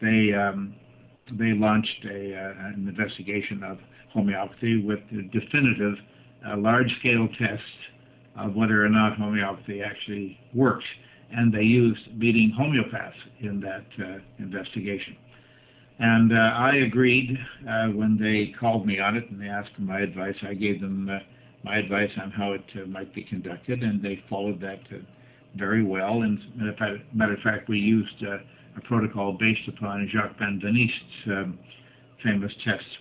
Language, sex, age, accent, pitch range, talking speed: English, male, 60-79, American, 100-125 Hz, 155 wpm